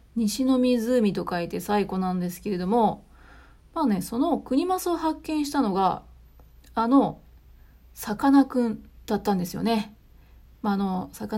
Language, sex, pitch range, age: Japanese, female, 185-250 Hz, 30-49